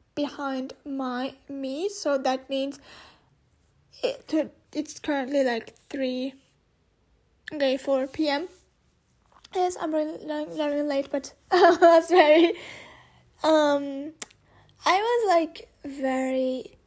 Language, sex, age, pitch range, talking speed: English, female, 10-29, 265-320 Hz, 95 wpm